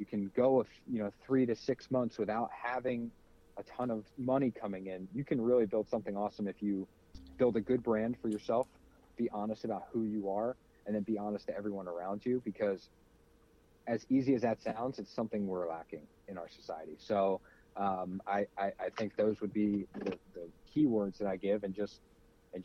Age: 40-59